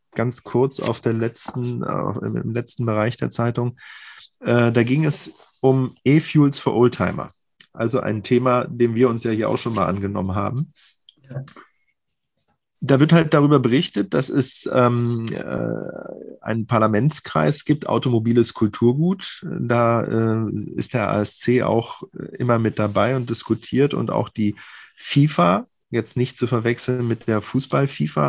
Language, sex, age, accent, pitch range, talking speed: German, male, 30-49, German, 110-130 Hz, 135 wpm